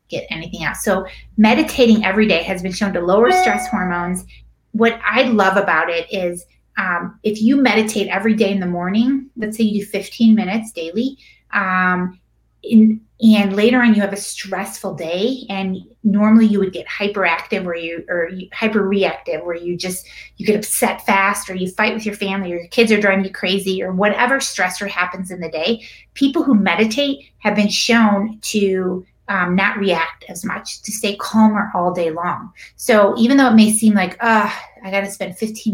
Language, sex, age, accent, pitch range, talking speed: English, female, 30-49, American, 185-220 Hz, 190 wpm